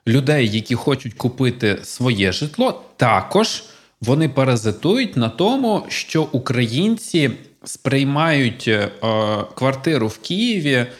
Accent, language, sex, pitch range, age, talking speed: native, Ukrainian, male, 110-150 Hz, 20-39, 95 wpm